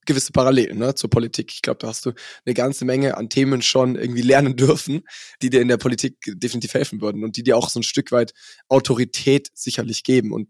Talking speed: 215 wpm